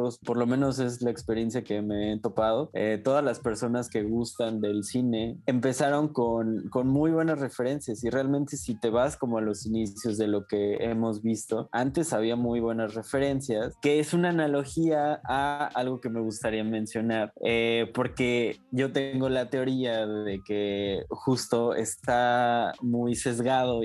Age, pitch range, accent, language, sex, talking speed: 20-39, 110-125 Hz, Mexican, Spanish, male, 165 wpm